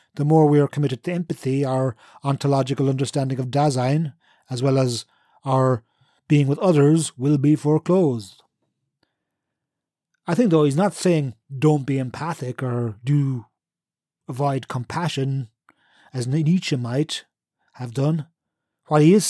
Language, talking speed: English, 135 wpm